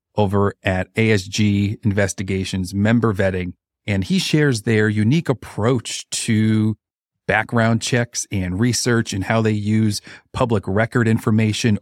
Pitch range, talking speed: 100-115 Hz, 120 wpm